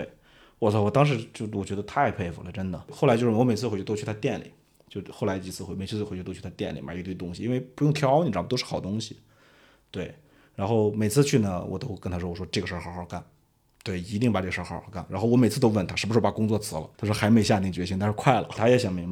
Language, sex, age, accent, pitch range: Chinese, male, 30-49, native, 95-130 Hz